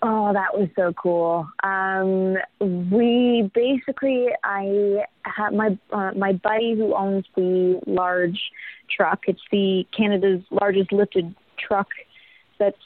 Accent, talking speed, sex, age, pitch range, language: American, 120 wpm, female, 20-39, 180-205 Hz, English